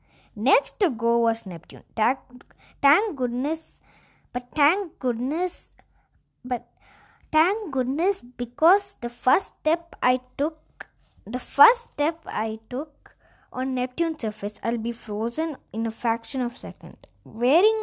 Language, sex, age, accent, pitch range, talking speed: Tamil, female, 20-39, native, 205-260 Hz, 130 wpm